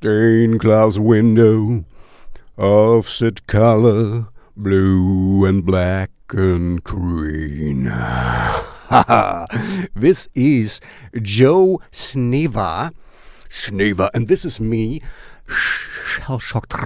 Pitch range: 105-130 Hz